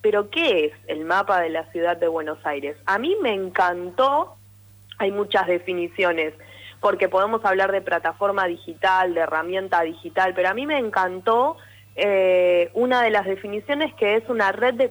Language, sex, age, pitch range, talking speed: Spanish, female, 20-39, 165-210 Hz, 170 wpm